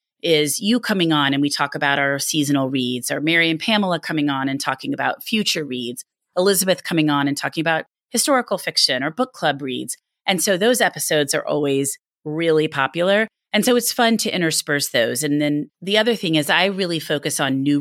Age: 30-49